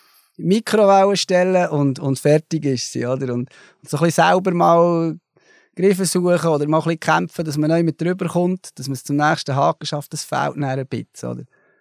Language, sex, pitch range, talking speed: German, male, 150-190 Hz, 185 wpm